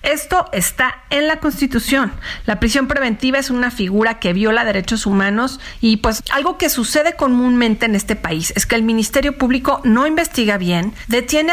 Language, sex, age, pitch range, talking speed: Spanish, female, 40-59, 205-260 Hz, 170 wpm